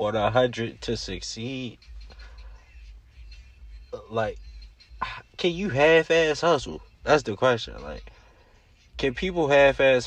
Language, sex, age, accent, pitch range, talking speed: English, male, 20-39, American, 90-125 Hz, 115 wpm